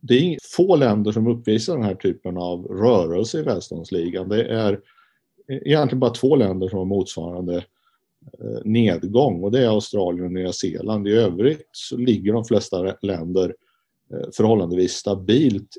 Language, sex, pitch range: Swedish, male, 95-115 Hz